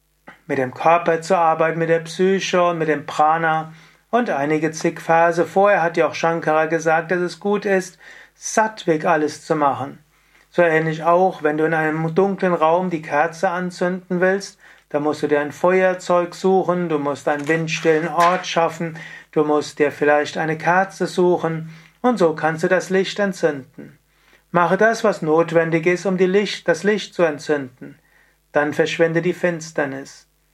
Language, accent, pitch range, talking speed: German, German, 155-180 Hz, 165 wpm